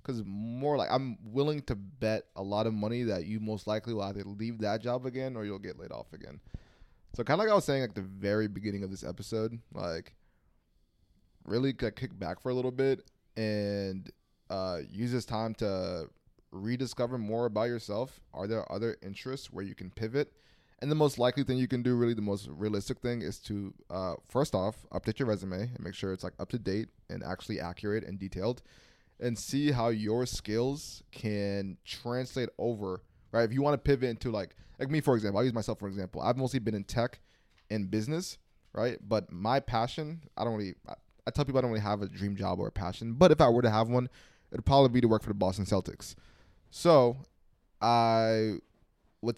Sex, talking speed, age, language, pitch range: male, 215 wpm, 20-39, English, 100-125 Hz